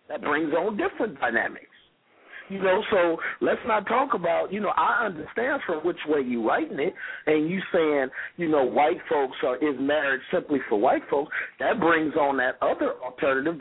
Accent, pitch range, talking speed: American, 135-170 Hz, 185 wpm